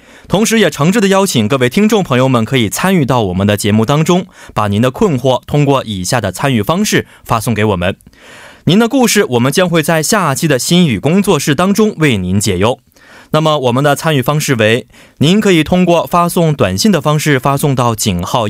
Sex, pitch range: male, 110-155 Hz